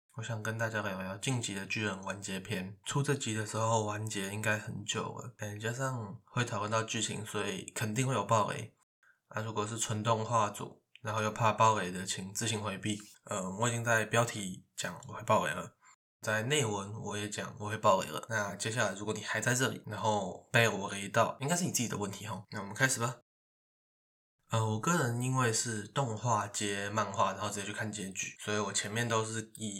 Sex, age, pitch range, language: male, 20-39, 105-115 Hz, Chinese